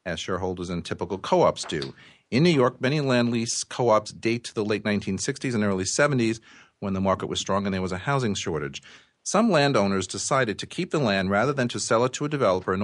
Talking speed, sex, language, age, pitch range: 225 wpm, male, English, 40-59, 95-120 Hz